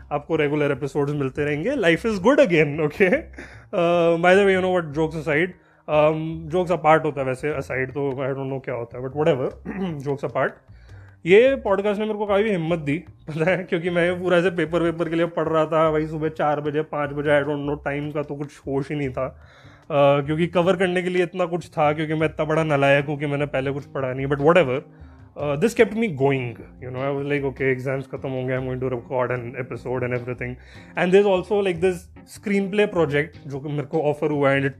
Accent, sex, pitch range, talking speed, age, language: native, male, 140-175 Hz, 195 wpm, 20-39, Hindi